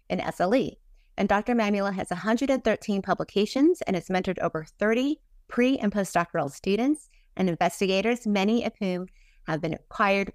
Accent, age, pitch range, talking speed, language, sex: American, 30-49, 180-225 Hz, 145 wpm, English, female